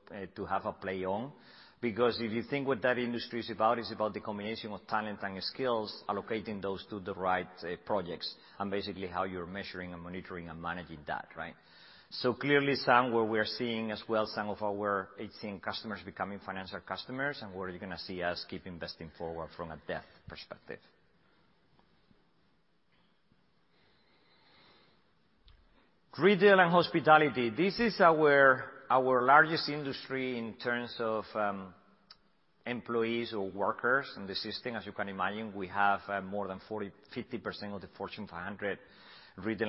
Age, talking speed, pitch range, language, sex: 40-59, 155 wpm, 100-125 Hz, English, male